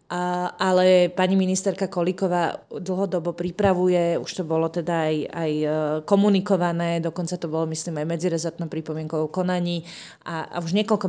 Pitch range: 170-195 Hz